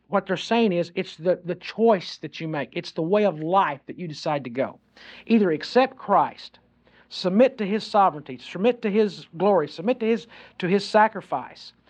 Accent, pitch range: American, 175-230 Hz